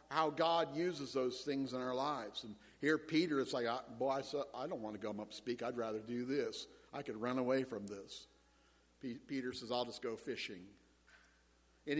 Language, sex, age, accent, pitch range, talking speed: English, male, 50-69, American, 120-195 Hz, 195 wpm